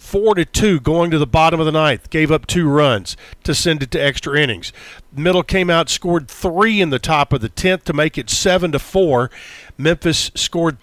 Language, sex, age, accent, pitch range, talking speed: English, male, 50-69, American, 135-165 Hz, 205 wpm